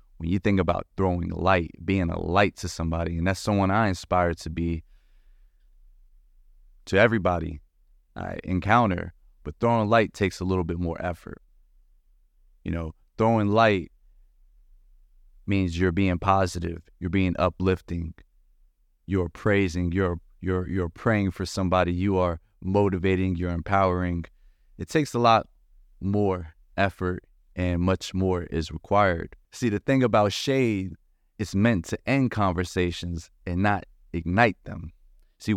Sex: male